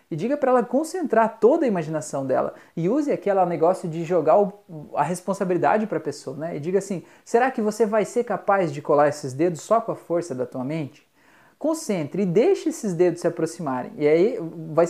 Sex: male